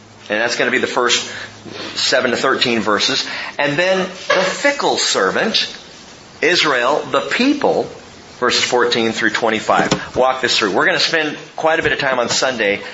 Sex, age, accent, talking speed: male, 40-59, American, 170 wpm